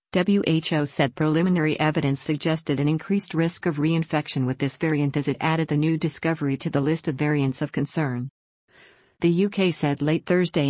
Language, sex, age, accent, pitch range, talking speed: English, female, 50-69, American, 140-165 Hz, 175 wpm